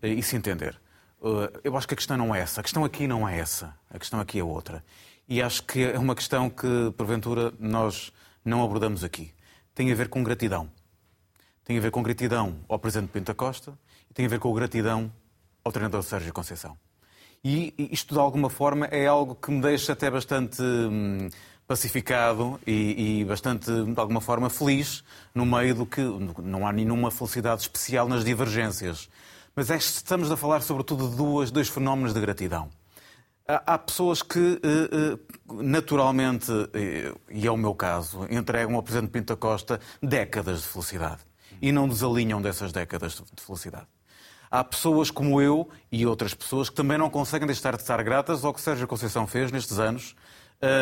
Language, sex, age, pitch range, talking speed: Portuguese, male, 30-49, 105-140 Hz, 170 wpm